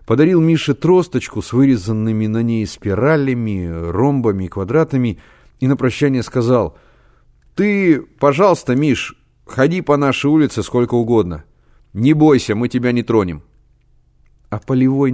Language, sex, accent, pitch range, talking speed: Russian, male, native, 90-130 Hz, 125 wpm